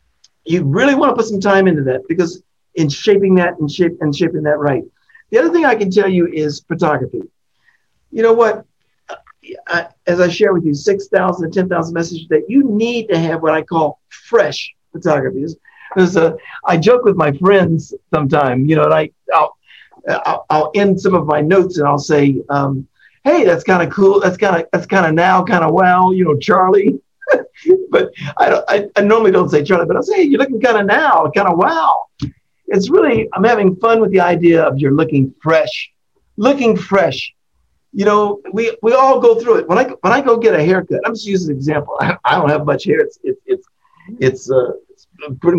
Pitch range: 160-235 Hz